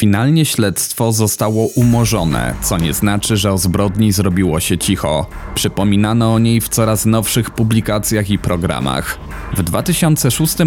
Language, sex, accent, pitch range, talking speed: Polish, male, native, 100-115 Hz, 135 wpm